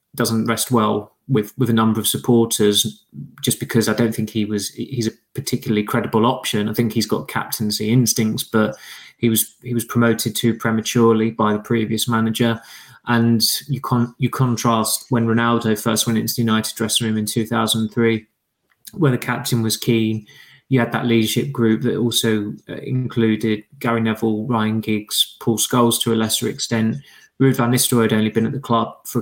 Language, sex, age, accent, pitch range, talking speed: English, male, 20-39, British, 110-120 Hz, 185 wpm